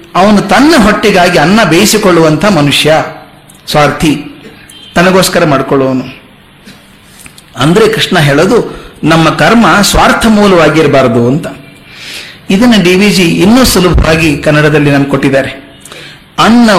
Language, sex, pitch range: Kannada, male, 155-210 Hz